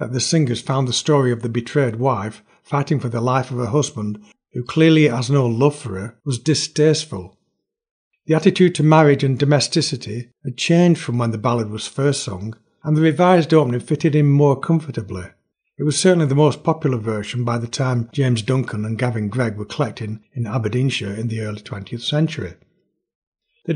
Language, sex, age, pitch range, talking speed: English, male, 60-79, 115-150 Hz, 185 wpm